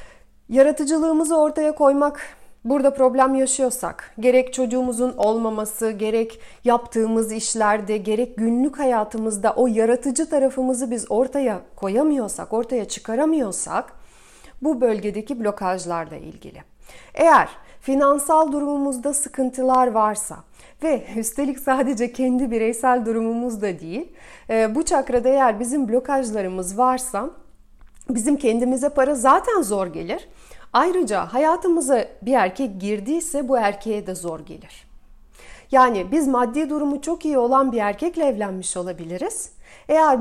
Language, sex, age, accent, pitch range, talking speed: Turkish, female, 40-59, native, 220-280 Hz, 110 wpm